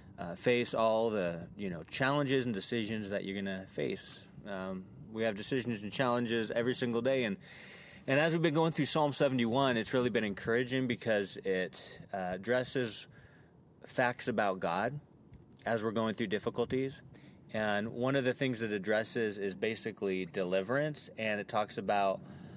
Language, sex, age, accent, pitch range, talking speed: English, male, 30-49, American, 110-135 Hz, 165 wpm